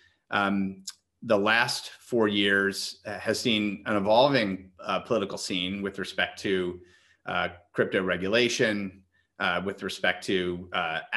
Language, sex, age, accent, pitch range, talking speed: English, male, 30-49, American, 95-110 Hz, 125 wpm